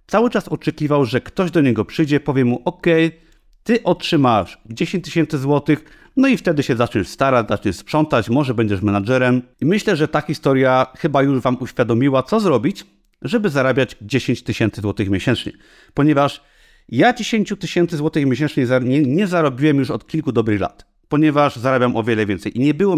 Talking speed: 170 wpm